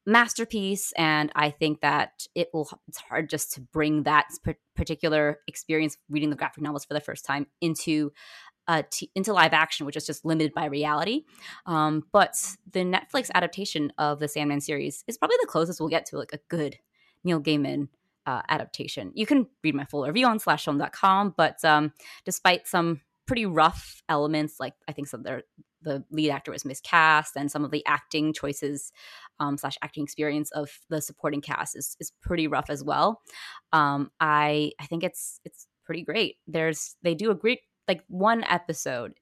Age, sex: 20-39, female